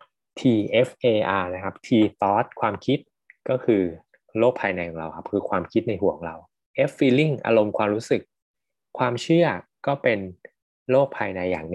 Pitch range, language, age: 95-125 Hz, Thai, 20-39